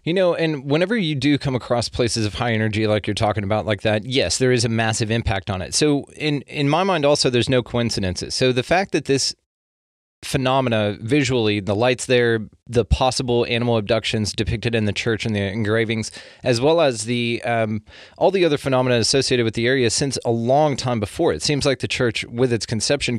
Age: 30-49